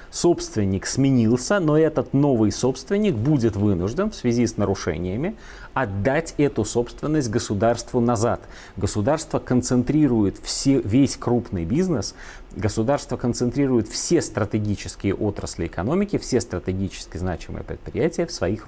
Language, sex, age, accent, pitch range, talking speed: Russian, male, 30-49, native, 100-155 Hz, 110 wpm